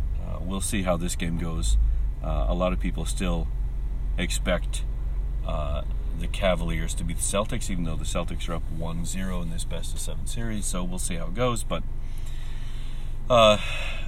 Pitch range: 70-95 Hz